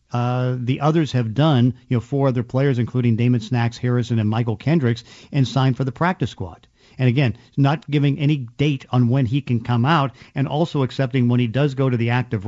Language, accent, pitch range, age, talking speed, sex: English, American, 120-140 Hz, 50-69, 215 wpm, male